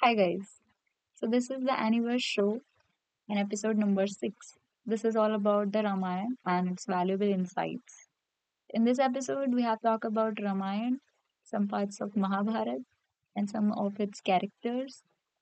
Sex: female